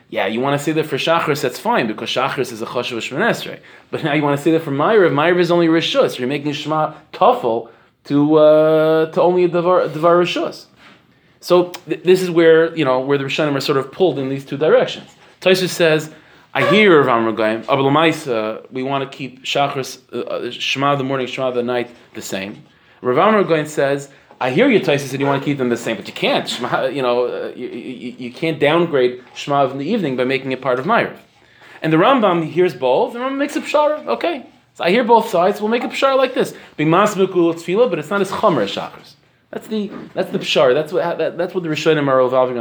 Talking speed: 225 wpm